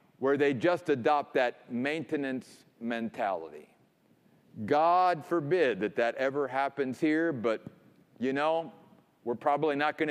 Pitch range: 145-205 Hz